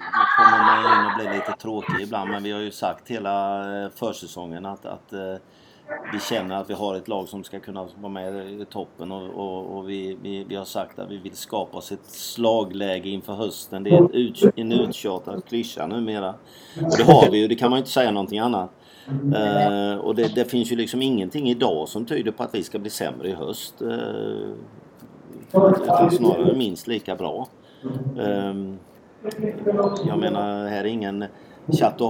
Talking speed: 190 wpm